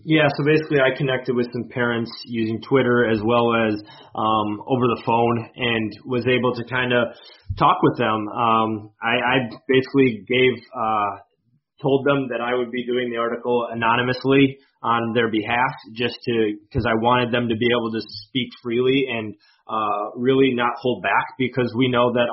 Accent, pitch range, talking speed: American, 115-130 Hz, 180 wpm